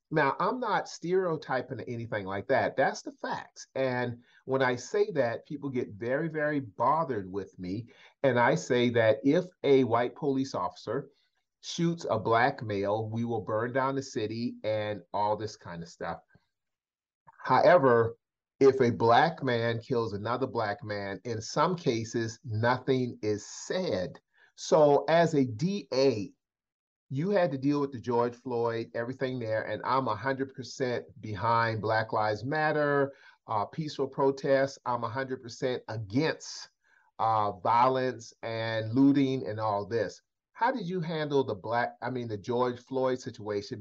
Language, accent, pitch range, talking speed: English, American, 115-140 Hz, 150 wpm